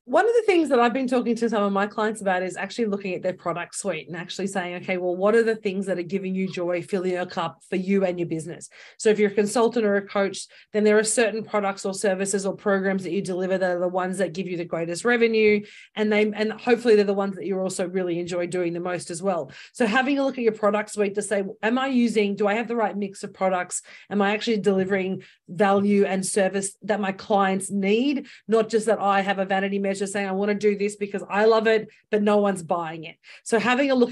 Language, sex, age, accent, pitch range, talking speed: English, female, 30-49, Australian, 190-215 Hz, 265 wpm